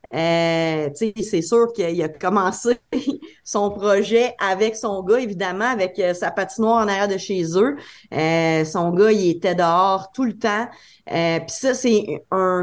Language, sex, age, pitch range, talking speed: French, female, 30-49, 175-210 Hz, 165 wpm